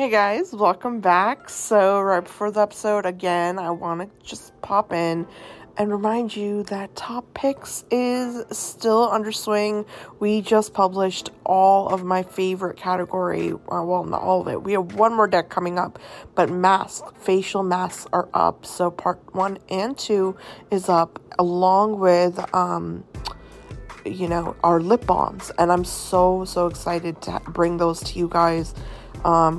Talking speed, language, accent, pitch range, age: 160 wpm, English, American, 165-195 Hz, 20-39